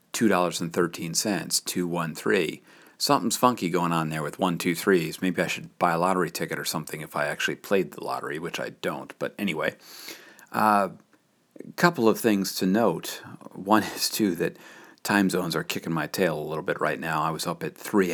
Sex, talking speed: male, 210 wpm